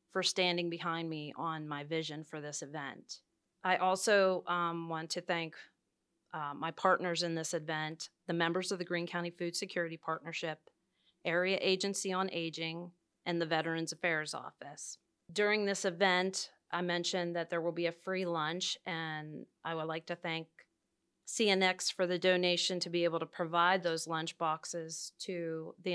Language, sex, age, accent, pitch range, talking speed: English, female, 30-49, American, 165-185 Hz, 165 wpm